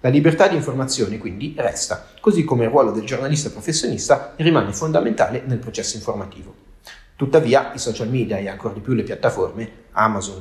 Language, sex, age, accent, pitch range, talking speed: Italian, male, 30-49, native, 110-145 Hz, 165 wpm